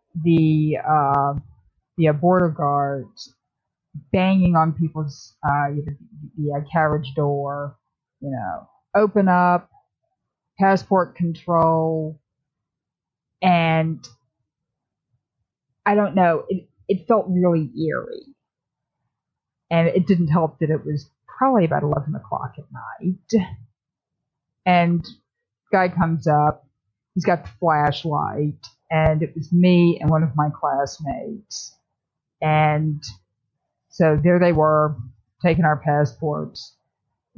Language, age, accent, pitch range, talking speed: English, 30-49, American, 145-175 Hz, 110 wpm